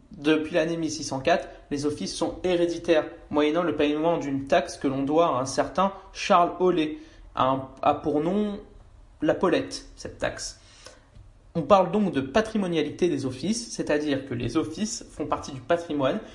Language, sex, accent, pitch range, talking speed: French, male, French, 145-180 Hz, 160 wpm